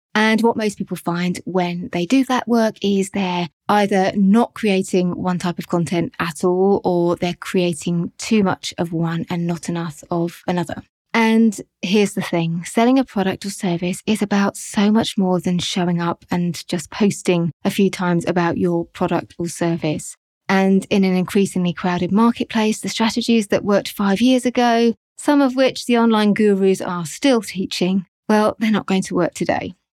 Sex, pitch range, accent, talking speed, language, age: female, 175-210 Hz, British, 180 wpm, English, 20-39